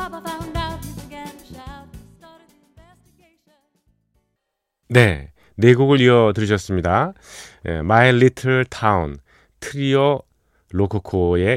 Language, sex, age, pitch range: Korean, male, 40-59, 90-130 Hz